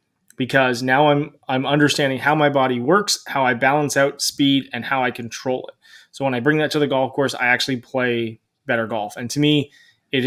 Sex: male